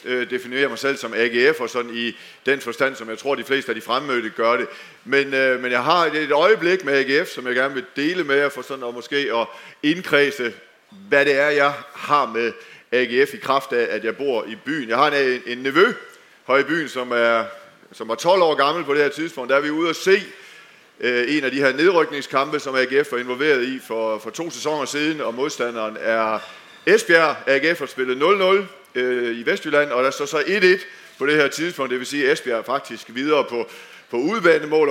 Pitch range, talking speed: 125-160 Hz, 215 wpm